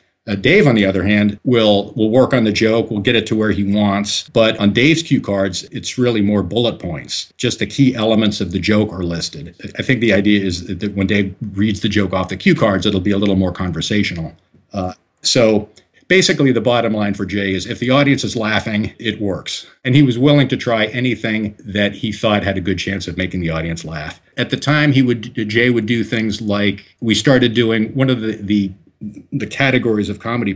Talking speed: 230 wpm